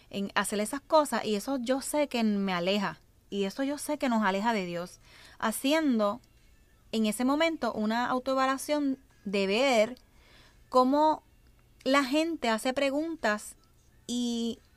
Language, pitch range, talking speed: Spanish, 195-265 Hz, 140 wpm